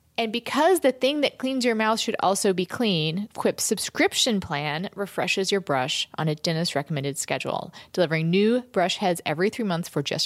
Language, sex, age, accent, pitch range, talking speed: English, female, 30-49, American, 165-230 Hz, 180 wpm